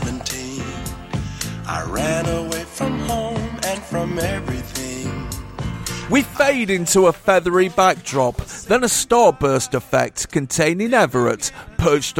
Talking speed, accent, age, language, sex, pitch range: 105 wpm, British, 50-69, English, male, 130-175 Hz